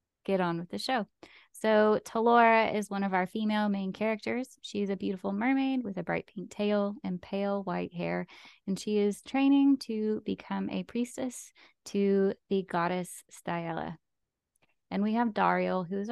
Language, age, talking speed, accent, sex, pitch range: English, 20-39, 165 wpm, American, female, 180-225 Hz